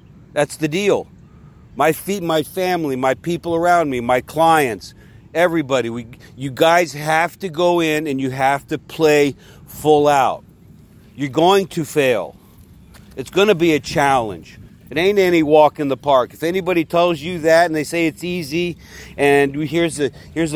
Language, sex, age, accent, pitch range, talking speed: English, male, 50-69, American, 125-165 Hz, 170 wpm